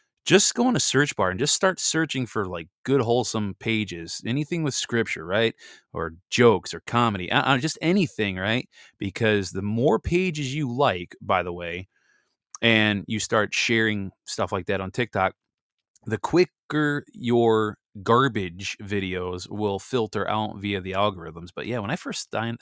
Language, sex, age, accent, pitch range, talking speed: English, male, 20-39, American, 95-125 Hz, 165 wpm